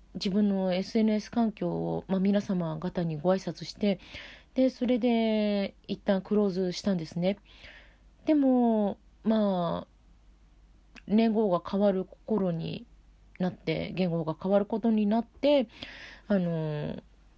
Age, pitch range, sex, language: 40-59, 180-245 Hz, female, Japanese